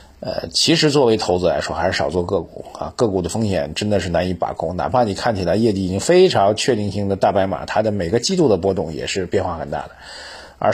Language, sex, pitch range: Chinese, male, 95-125 Hz